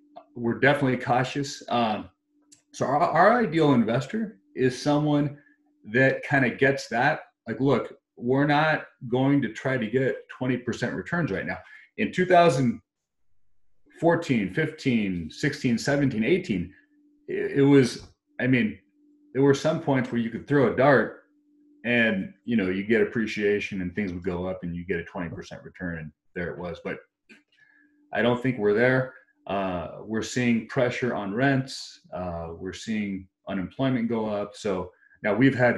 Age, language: 30-49, English